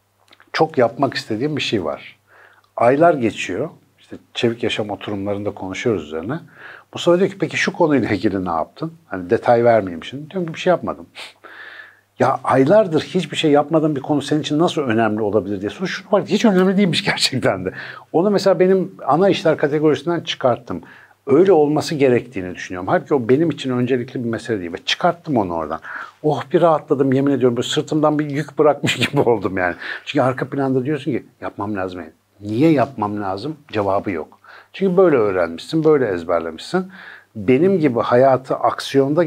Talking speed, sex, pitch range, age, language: 170 wpm, male, 110-155 Hz, 60-79, Turkish